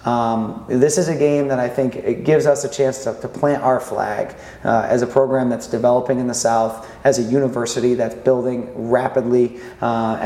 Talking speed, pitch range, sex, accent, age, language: 200 wpm, 120-135 Hz, male, American, 20-39, English